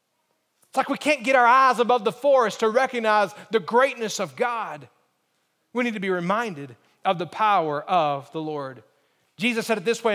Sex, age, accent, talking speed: male, 30-49, American, 190 wpm